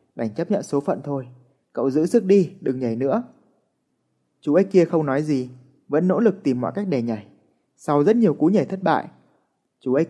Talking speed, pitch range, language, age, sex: 215 wpm, 130-170 Hz, Vietnamese, 20-39, male